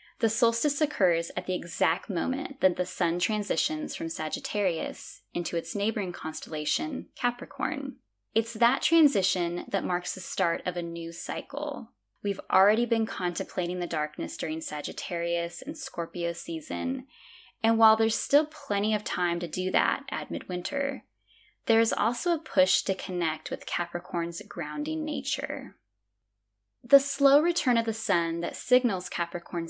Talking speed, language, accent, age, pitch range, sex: 145 wpm, English, American, 10-29, 175-265 Hz, female